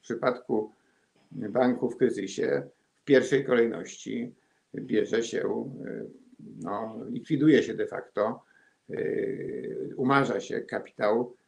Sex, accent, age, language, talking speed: male, native, 50-69, Polish, 95 wpm